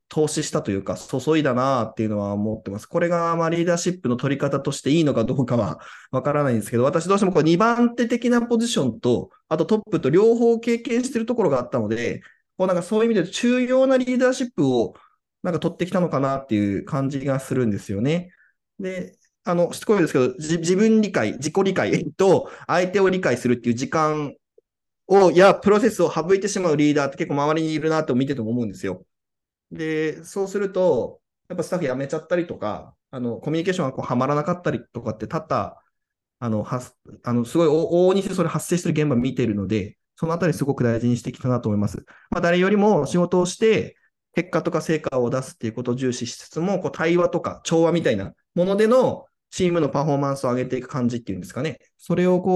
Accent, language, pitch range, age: native, Japanese, 125-185 Hz, 20-39